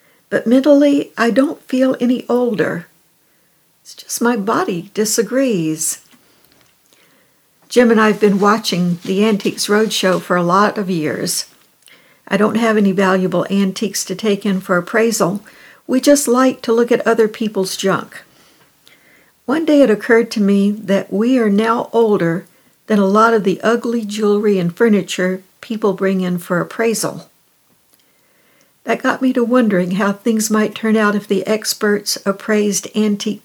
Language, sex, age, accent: English, female, 60-79, American